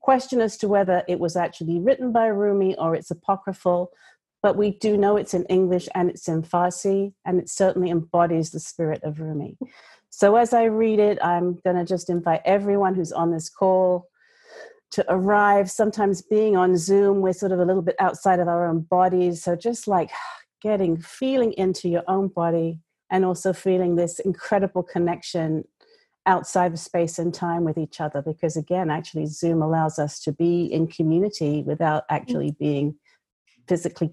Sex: female